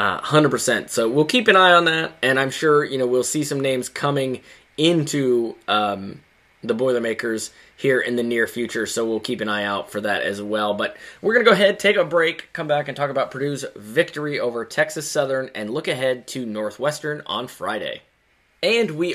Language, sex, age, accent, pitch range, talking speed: English, male, 20-39, American, 125-155 Hz, 205 wpm